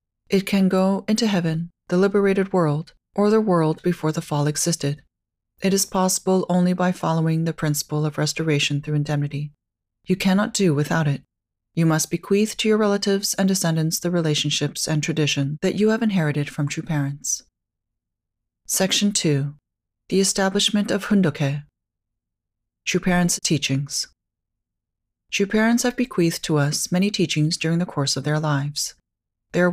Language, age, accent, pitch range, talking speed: English, 40-59, American, 145-190 Hz, 150 wpm